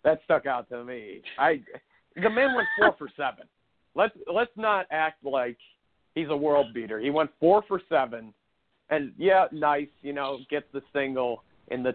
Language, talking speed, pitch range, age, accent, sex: English, 180 wpm, 135-180 Hz, 50-69, American, male